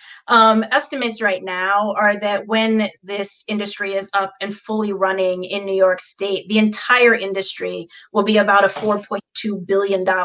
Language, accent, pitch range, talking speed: English, American, 195-220 Hz, 160 wpm